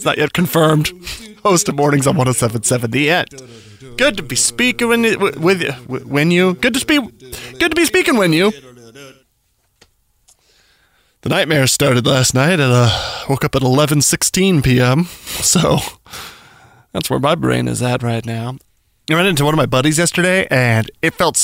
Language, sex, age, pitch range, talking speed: English, male, 20-39, 125-180 Hz, 170 wpm